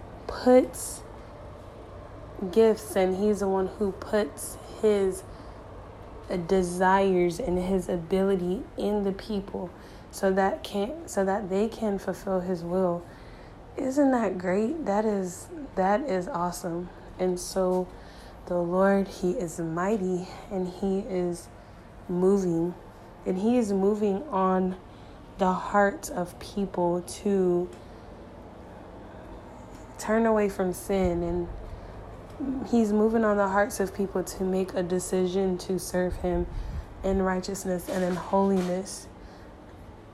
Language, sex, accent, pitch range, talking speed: English, female, American, 175-200 Hz, 120 wpm